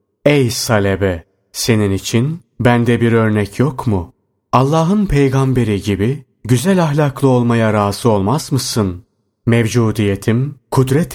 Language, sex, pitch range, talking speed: Turkish, male, 105-135 Hz, 110 wpm